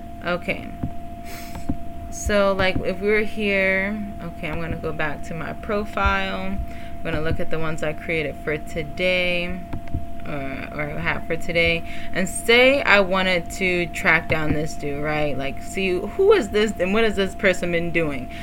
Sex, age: female, 20-39